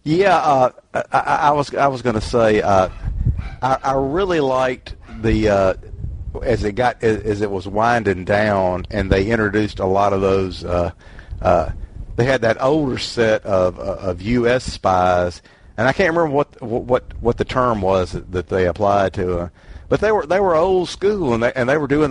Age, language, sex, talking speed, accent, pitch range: 50-69, English, male, 195 wpm, American, 90-120 Hz